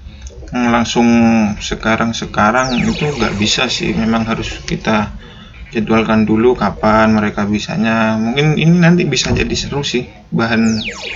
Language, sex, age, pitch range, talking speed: Indonesian, male, 20-39, 110-120 Hz, 120 wpm